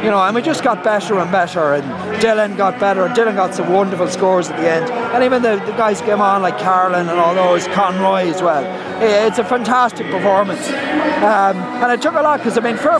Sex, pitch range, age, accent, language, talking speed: male, 170-225 Hz, 30-49, Irish, English, 235 wpm